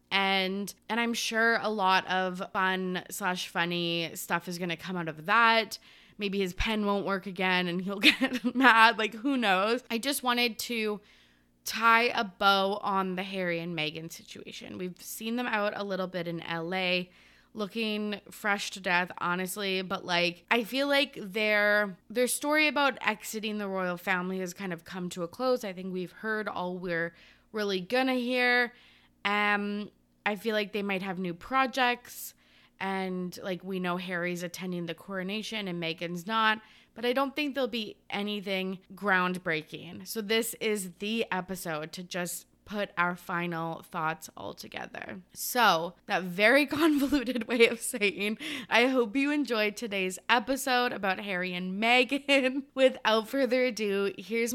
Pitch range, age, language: 180-230 Hz, 20-39, English